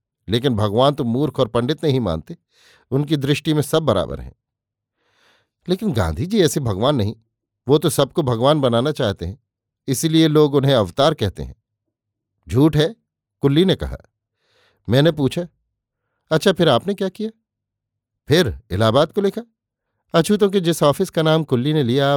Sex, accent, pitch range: male, native, 115-160 Hz